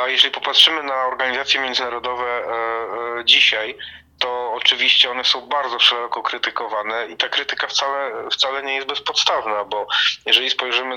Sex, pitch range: male, 115-125 Hz